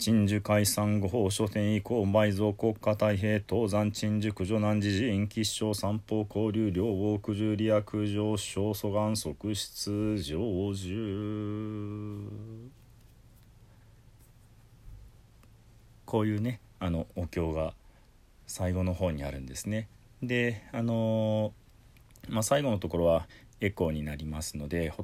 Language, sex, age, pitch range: Japanese, male, 40-59, 90-115 Hz